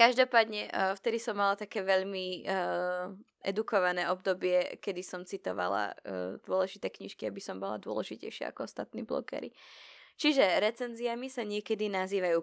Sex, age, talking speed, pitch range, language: female, 20-39, 130 wpm, 185-235 Hz, Slovak